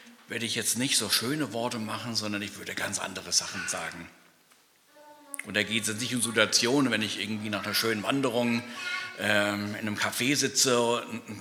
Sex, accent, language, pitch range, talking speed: male, German, German, 105-130 Hz, 190 wpm